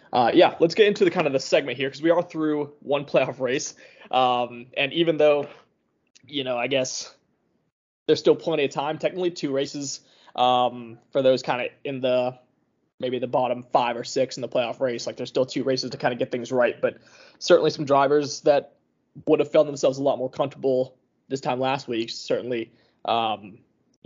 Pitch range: 125-150 Hz